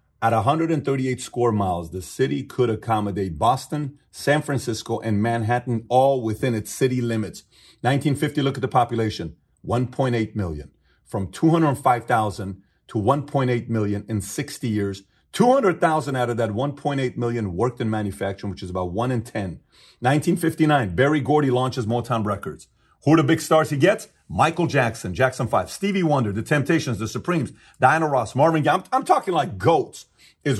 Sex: male